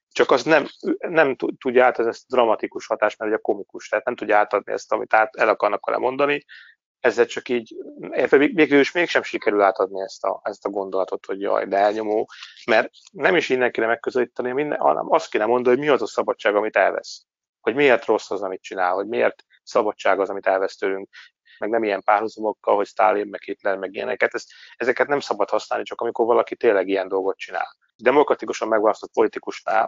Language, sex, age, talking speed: Hungarian, male, 30-49, 195 wpm